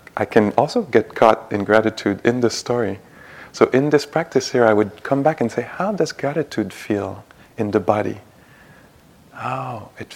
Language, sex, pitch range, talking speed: English, male, 100-115 Hz, 175 wpm